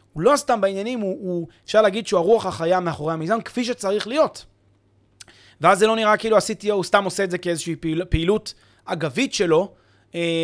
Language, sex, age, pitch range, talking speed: Hebrew, male, 30-49, 150-210 Hz, 190 wpm